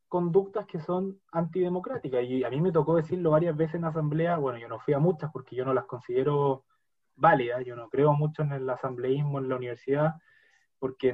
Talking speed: 205 wpm